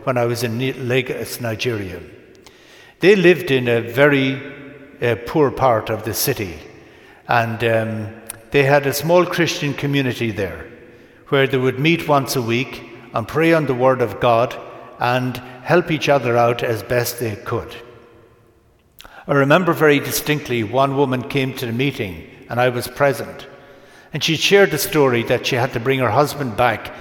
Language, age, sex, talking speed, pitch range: English, 60-79, male, 170 wpm, 115-140 Hz